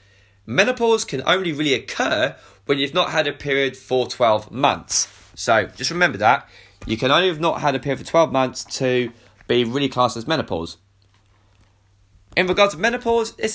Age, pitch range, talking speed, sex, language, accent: 20-39, 105-155 Hz, 175 wpm, male, English, British